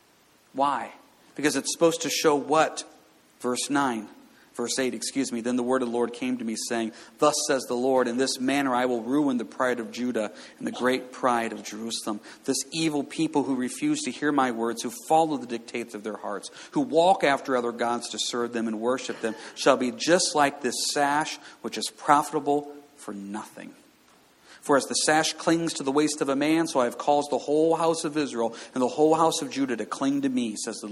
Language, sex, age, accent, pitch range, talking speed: English, male, 50-69, American, 115-145 Hz, 220 wpm